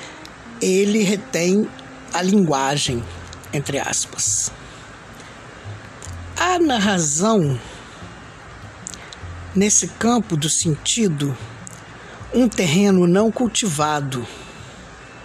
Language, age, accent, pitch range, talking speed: Portuguese, 60-79, Brazilian, 140-210 Hz, 65 wpm